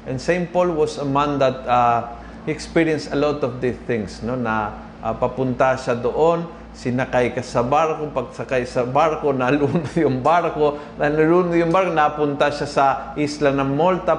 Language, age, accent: Filipino, 50-69, native